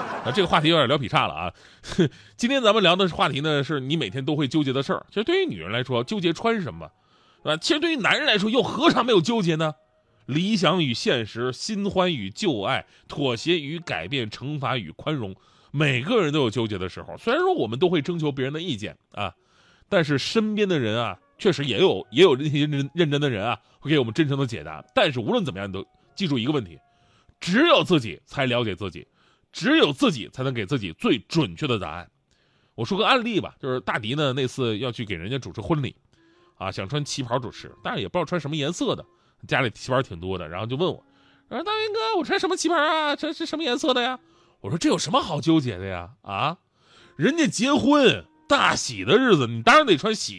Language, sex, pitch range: Chinese, male, 120-185 Hz